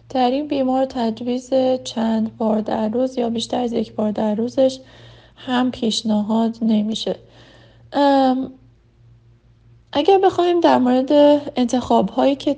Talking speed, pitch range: 115 wpm, 220-265 Hz